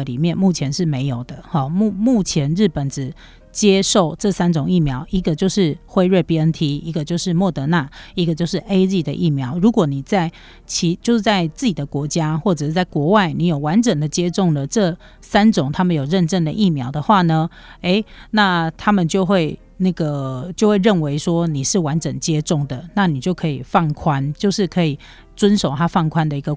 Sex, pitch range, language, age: female, 155-195 Hz, Chinese, 40-59